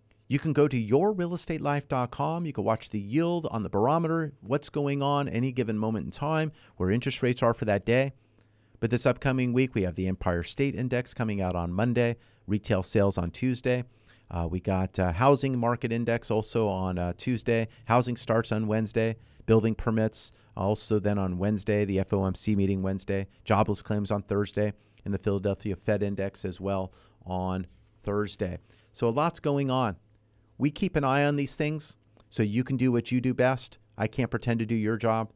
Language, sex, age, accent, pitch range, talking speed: English, male, 40-59, American, 105-125 Hz, 190 wpm